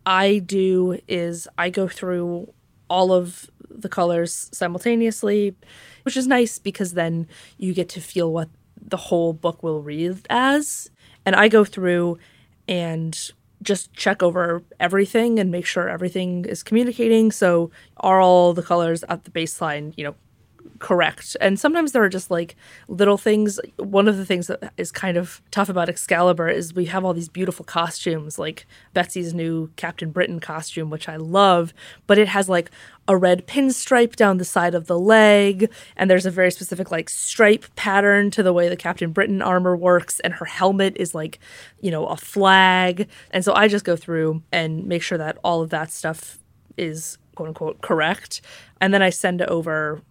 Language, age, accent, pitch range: English, 20-39, American, 170-200 Hz